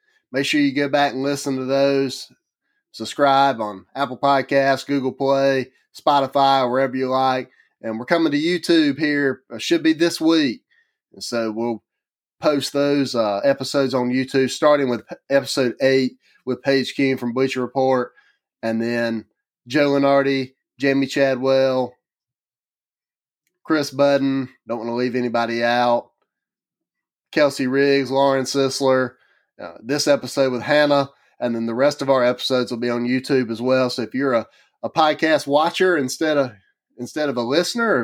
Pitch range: 120-140 Hz